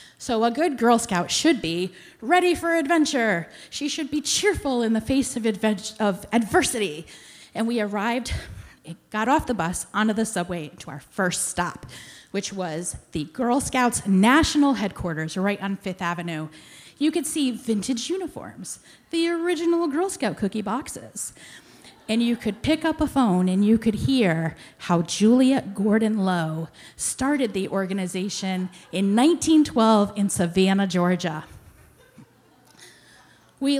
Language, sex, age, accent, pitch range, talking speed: English, female, 30-49, American, 185-260 Hz, 140 wpm